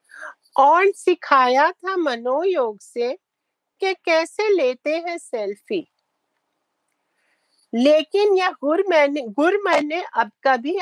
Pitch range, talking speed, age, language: 255-345 Hz, 95 wpm, 50-69, Hindi